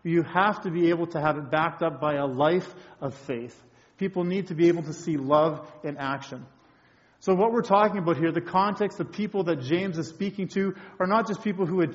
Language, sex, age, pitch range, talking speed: English, male, 40-59, 155-195 Hz, 230 wpm